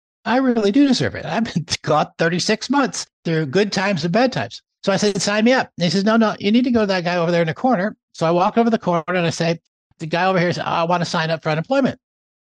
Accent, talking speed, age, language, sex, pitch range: American, 290 wpm, 60-79, English, male, 140-185 Hz